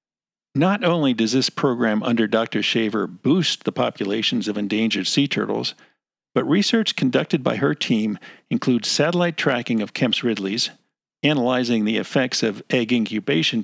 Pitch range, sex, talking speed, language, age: 120-155 Hz, male, 145 wpm, English, 50-69